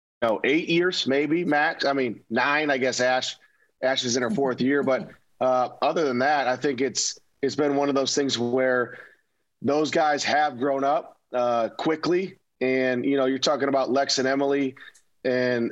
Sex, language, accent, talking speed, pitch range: male, English, American, 185 wpm, 125-145 Hz